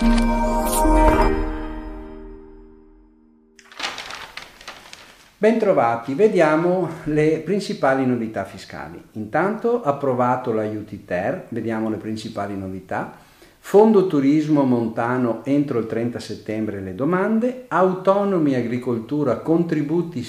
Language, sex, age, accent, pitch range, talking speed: Italian, male, 50-69, native, 110-170 Hz, 75 wpm